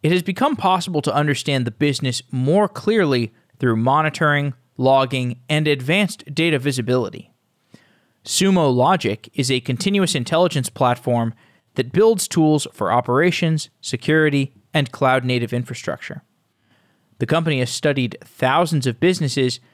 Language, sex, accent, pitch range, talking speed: English, male, American, 125-160 Hz, 120 wpm